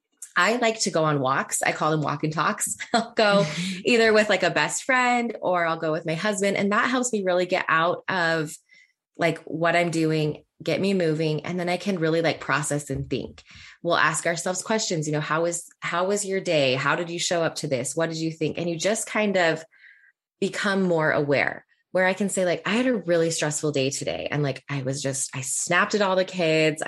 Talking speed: 230 wpm